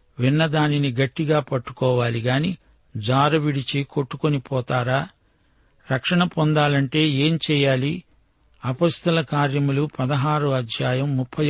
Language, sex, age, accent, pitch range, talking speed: Telugu, male, 60-79, native, 130-155 Hz, 90 wpm